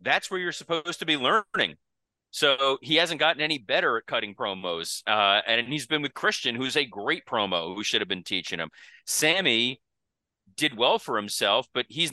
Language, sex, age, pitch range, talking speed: English, male, 30-49, 100-145 Hz, 195 wpm